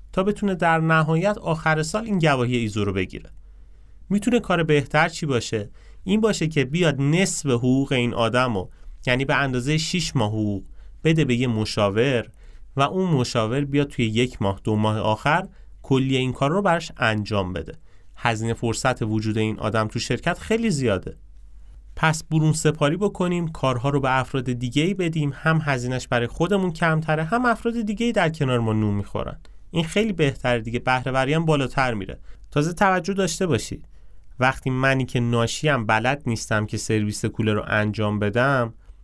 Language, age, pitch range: Persian, 30-49, 105-150 Hz